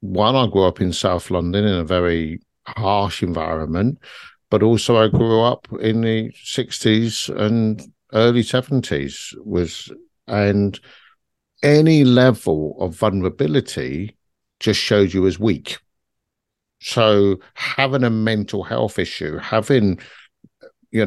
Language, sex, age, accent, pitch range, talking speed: English, male, 50-69, British, 95-125 Hz, 120 wpm